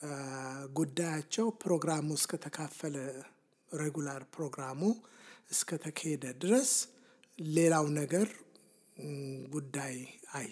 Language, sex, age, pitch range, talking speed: English, male, 60-79, 140-190 Hz, 65 wpm